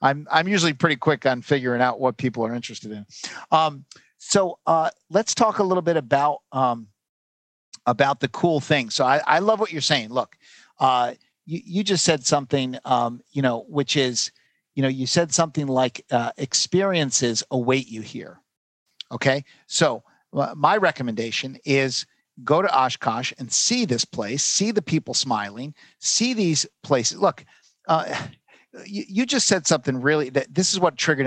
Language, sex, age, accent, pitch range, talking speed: English, male, 50-69, American, 130-170 Hz, 170 wpm